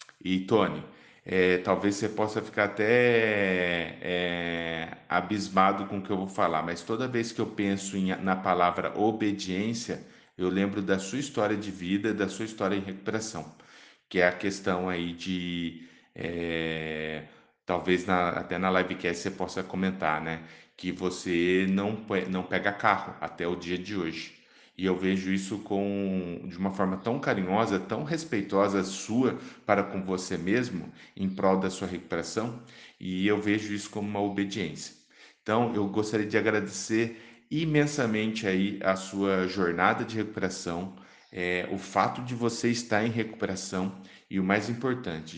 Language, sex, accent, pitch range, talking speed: Portuguese, male, Brazilian, 90-105 Hz, 160 wpm